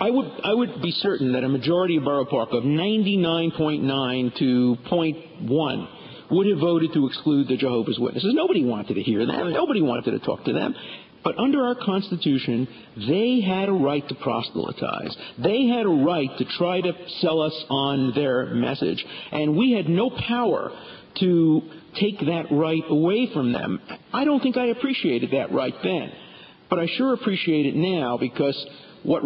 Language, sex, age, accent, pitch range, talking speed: English, male, 50-69, American, 145-200 Hz, 175 wpm